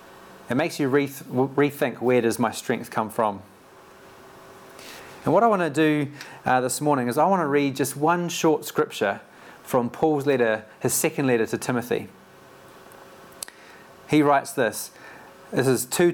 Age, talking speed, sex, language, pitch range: 30-49, 155 wpm, male, English, 120-155 Hz